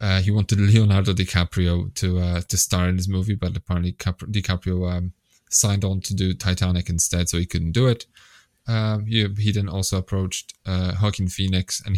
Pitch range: 90-115 Hz